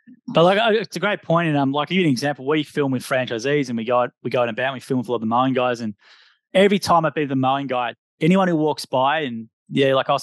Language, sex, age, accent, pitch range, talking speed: English, male, 20-39, Australian, 125-160 Hz, 300 wpm